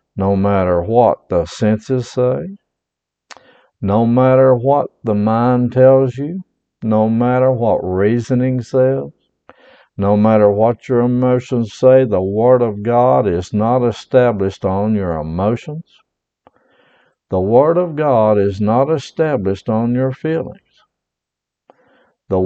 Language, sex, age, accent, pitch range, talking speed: English, male, 60-79, American, 95-125 Hz, 120 wpm